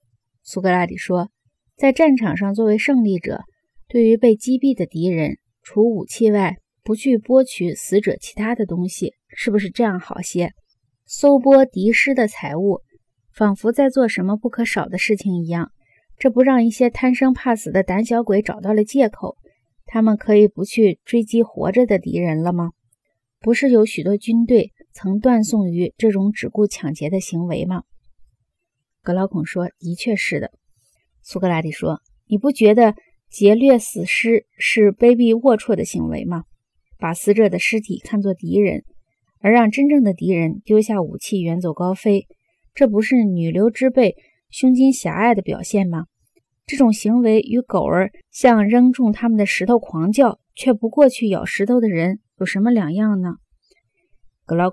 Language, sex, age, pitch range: Chinese, female, 20-39, 180-235 Hz